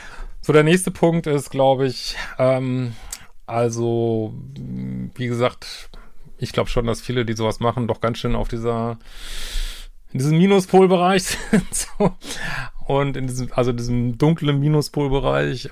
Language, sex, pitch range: German, male, 115-140 Hz